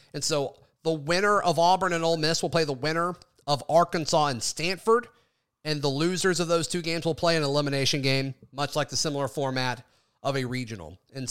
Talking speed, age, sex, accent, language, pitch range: 200 wpm, 30-49, male, American, English, 140-175 Hz